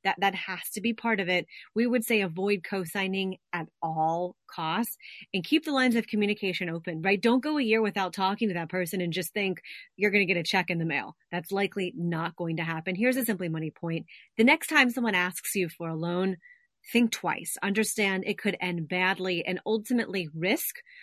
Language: English